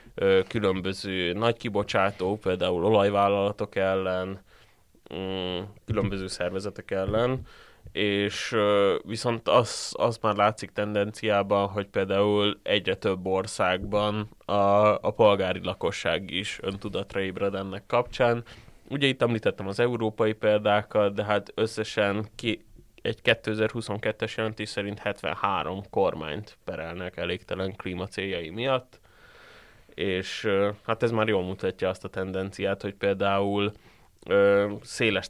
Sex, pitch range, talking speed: male, 95-110 Hz, 105 wpm